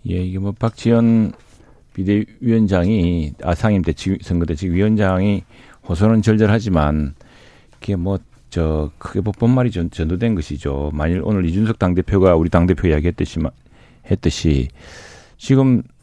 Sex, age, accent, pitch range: male, 40-59, native, 90-120 Hz